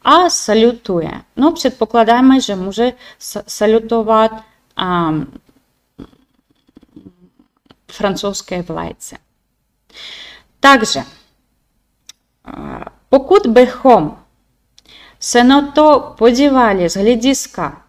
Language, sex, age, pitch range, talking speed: Czech, female, 20-39, 185-265 Hz, 70 wpm